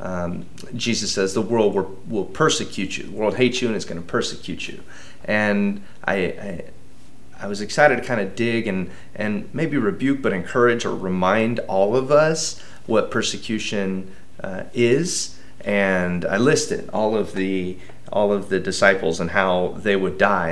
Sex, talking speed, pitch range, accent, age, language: male, 170 wpm, 95-120 Hz, American, 30-49, English